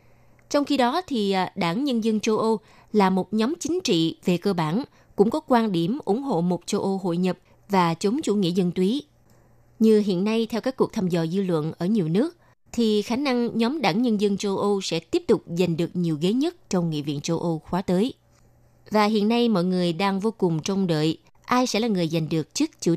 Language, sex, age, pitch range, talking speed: Vietnamese, female, 20-39, 175-220 Hz, 230 wpm